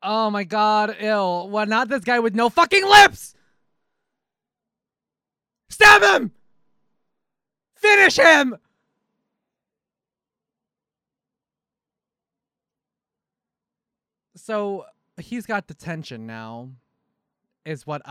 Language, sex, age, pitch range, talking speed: English, male, 20-39, 150-220 Hz, 75 wpm